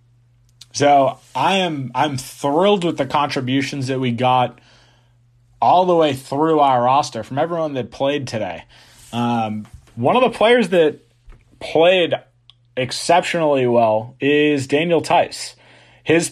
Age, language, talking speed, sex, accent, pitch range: 30-49, English, 130 wpm, male, American, 120-145 Hz